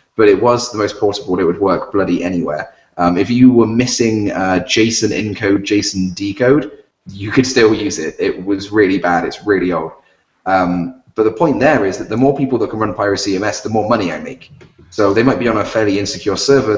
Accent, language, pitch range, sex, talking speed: British, English, 95-120 Hz, male, 220 wpm